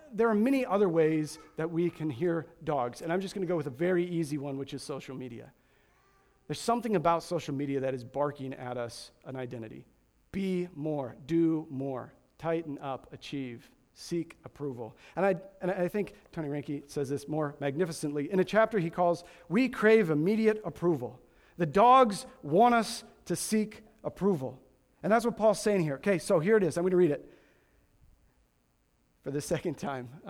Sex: male